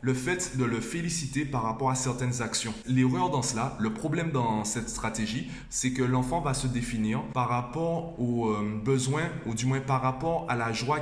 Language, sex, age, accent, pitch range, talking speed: French, male, 20-39, French, 115-140 Hz, 200 wpm